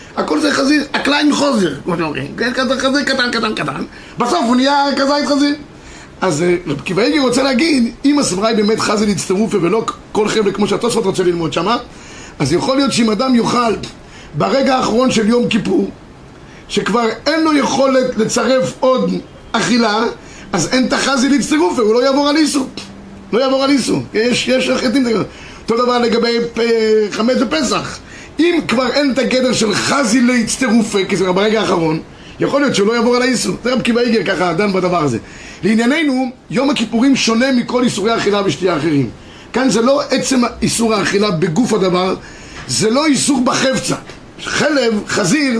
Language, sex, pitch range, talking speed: Hebrew, male, 210-265 Hz, 160 wpm